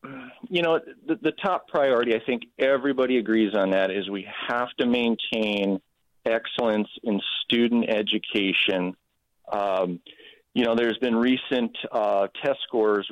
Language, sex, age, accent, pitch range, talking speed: English, male, 40-59, American, 105-135 Hz, 135 wpm